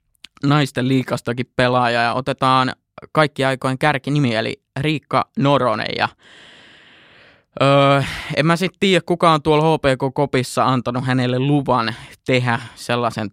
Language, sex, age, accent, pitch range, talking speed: Finnish, male, 20-39, native, 120-140 Hz, 120 wpm